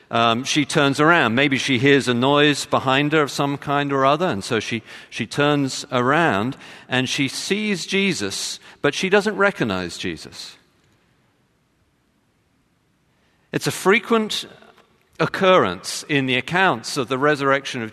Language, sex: English, male